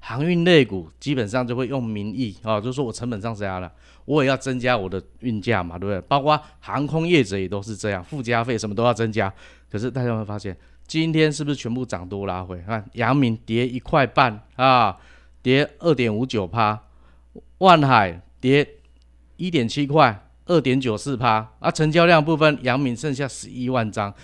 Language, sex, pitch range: Chinese, male, 100-140 Hz